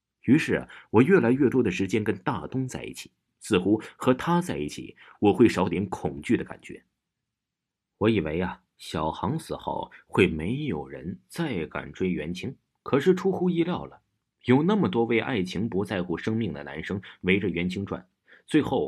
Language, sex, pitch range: Chinese, male, 85-125 Hz